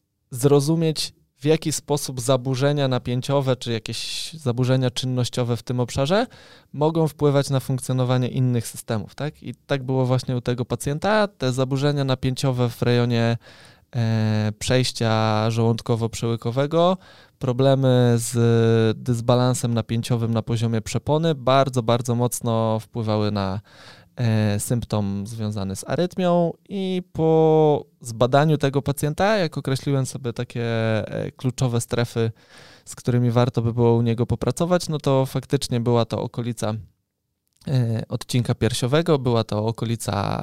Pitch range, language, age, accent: 115-140 Hz, Polish, 20-39, native